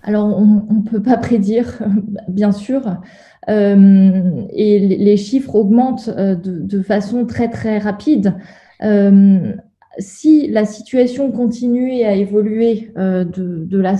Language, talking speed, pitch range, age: French, 130 wpm, 200-235 Hz, 20-39